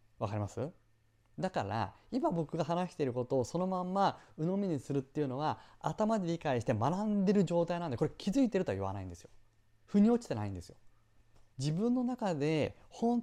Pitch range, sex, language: 120-200 Hz, male, Japanese